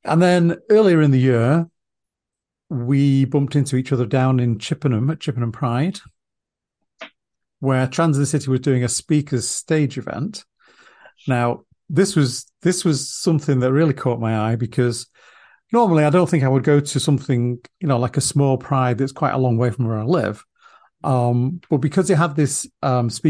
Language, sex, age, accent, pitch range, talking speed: English, male, 40-59, British, 125-155 Hz, 175 wpm